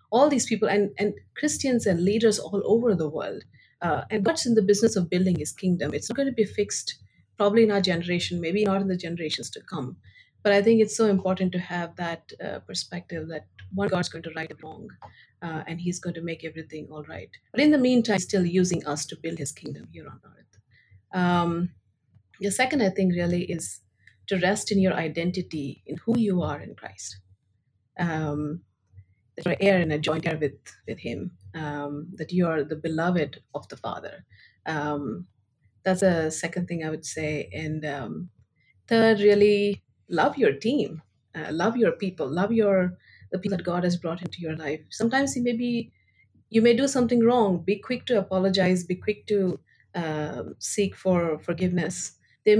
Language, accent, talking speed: English, Indian, 195 wpm